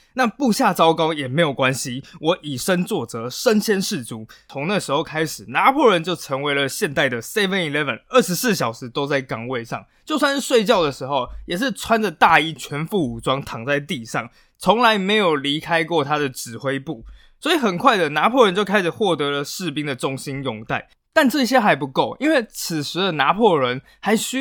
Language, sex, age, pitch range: Chinese, male, 20-39, 135-205 Hz